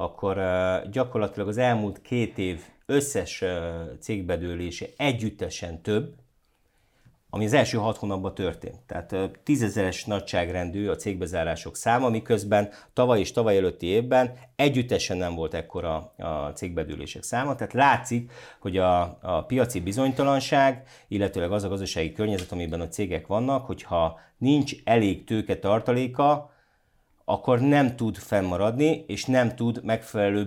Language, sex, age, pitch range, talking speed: Hungarian, male, 50-69, 95-125 Hz, 125 wpm